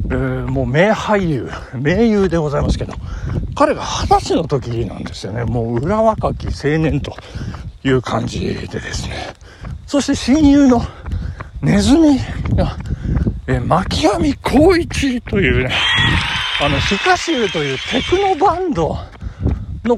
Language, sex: Japanese, male